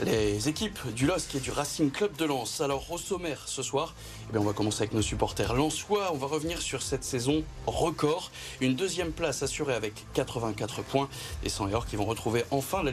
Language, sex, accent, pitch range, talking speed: French, male, French, 110-155 Hz, 225 wpm